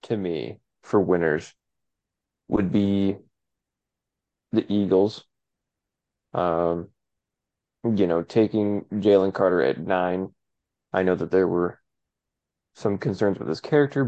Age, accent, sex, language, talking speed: 20-39, American, male, English, 110 wpm